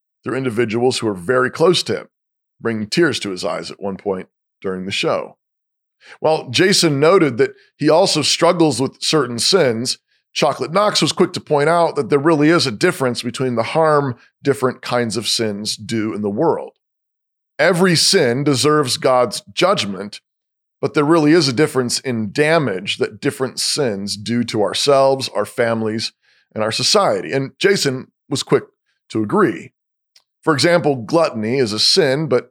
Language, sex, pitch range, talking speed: English, male, 115-155 Hz, 165 wpm